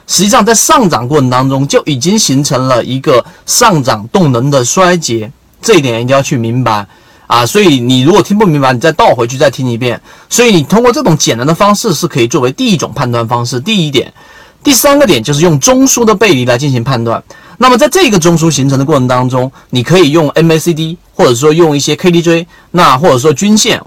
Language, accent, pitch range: Chinese, native, 130-185 Hz